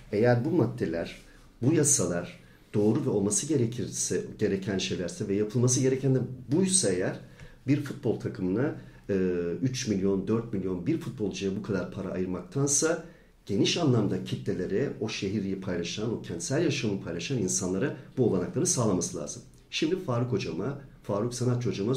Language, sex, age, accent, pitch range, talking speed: Turkish, male, 50-69, native, 95-130 Hz, 140 wpm